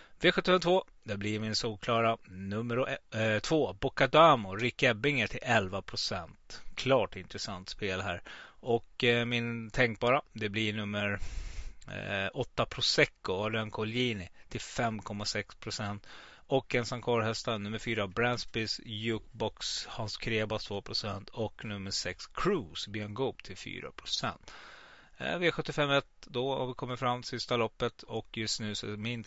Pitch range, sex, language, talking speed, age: 105-120 Hz, male, Swedish, 125 wpm, 30-49